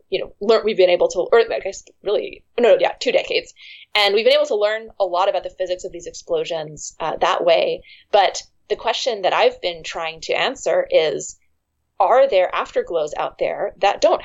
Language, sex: English, female